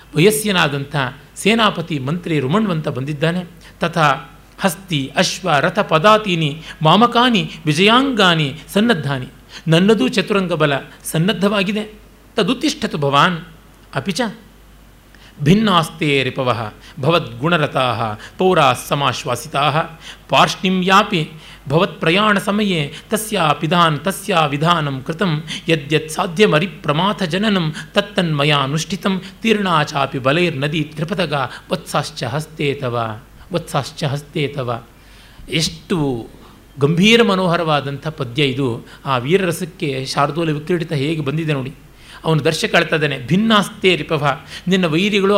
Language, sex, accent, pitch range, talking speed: Kannada, male, native, 145-195 Hz, 75 wpm